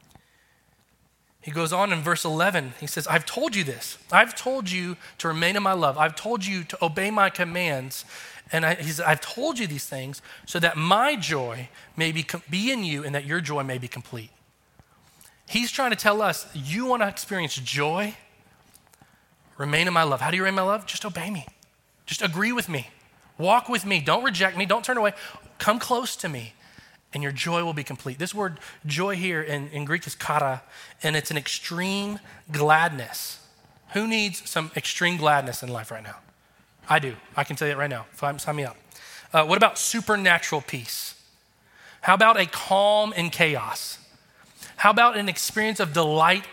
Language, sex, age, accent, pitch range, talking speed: English, male, 30-49, American, 145-200 Hz, 195 wpm